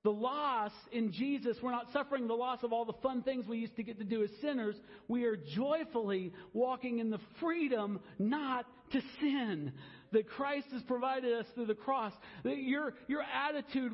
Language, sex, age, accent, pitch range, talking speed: English, male, 50-69, American, 205-270 Hz, 190 wpm